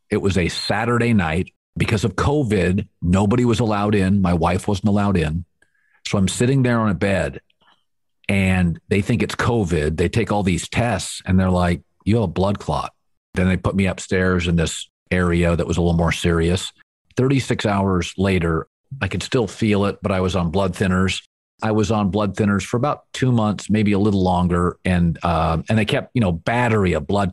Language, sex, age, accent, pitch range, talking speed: English, male, 50-69, American, 90-120 Hz, 205 wpm